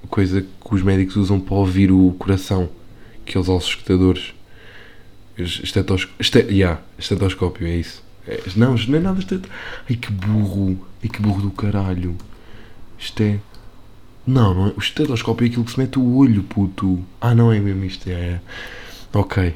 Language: Portuguese